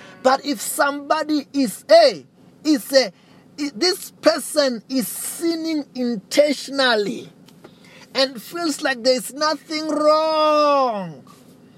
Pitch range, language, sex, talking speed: 205-295 Hz, English, male, 95 wpm